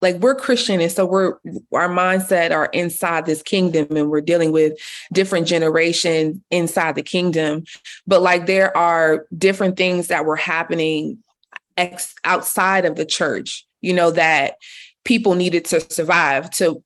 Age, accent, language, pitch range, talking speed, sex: 20-39, American, English, 160-185 Hz, 150 wpm, female